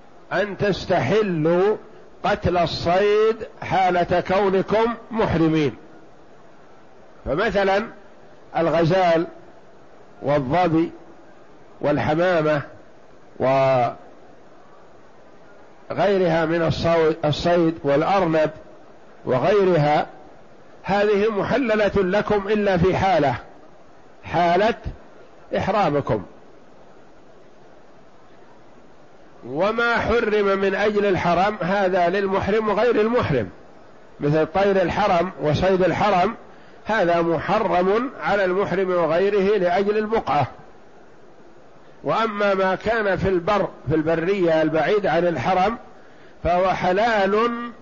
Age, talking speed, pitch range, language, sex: 50-69, 70 wpm, 165-205 Hz, Arabic, male